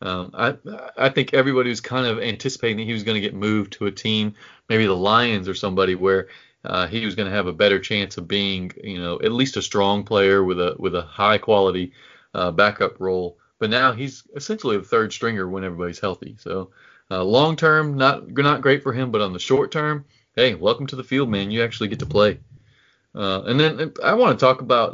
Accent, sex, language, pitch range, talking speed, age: American, male, English, 100-130 Hz, 230 wpm, 30-49